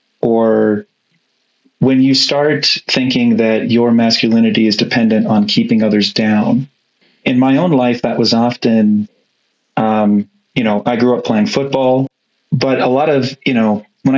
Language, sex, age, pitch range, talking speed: English, male, 30-49, 110-130 Hz, 150 wpm